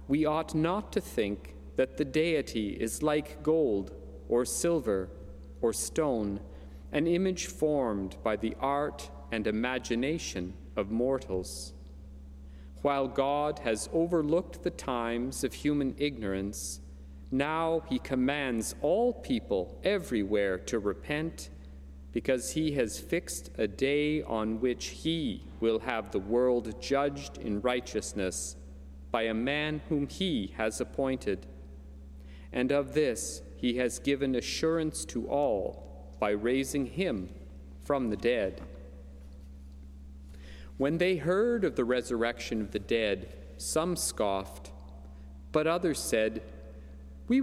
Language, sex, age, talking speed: English, male, 40-59, 120 wpm